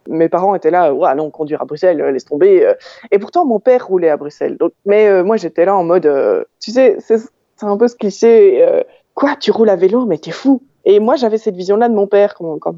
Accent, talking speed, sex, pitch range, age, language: French, 260 wpm, female, 175-275 Hz, 20-39, French